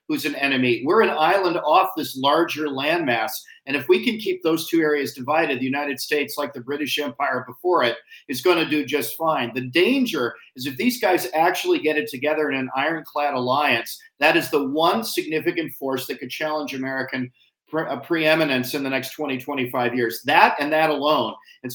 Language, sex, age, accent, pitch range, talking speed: English, male, 50-69, American, 135-170 Hz, 200 wpm